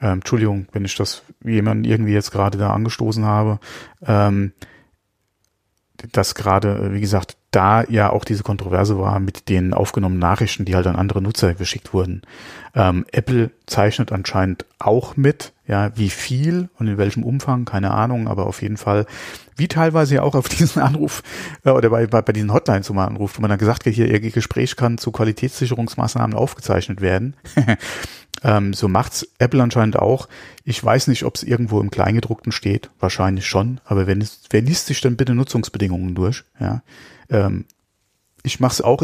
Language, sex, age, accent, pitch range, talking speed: German, male, 40-59, German, 100-120 Hz, 170 wpm